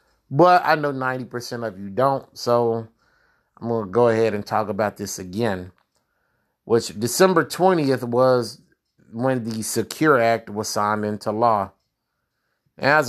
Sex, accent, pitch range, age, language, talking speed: male, American, 105-130 Hz, 30-49, English, 140 wpm